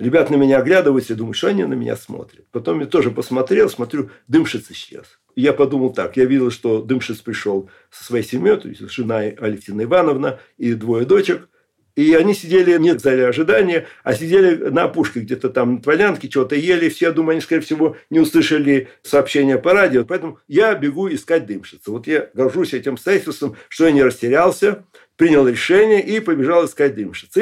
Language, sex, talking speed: Russian, male, 180 wpm